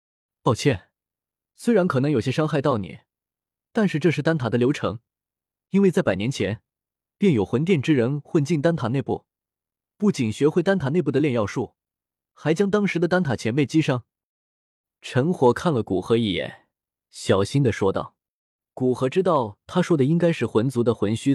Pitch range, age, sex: 110-165 Hz, 20-39, male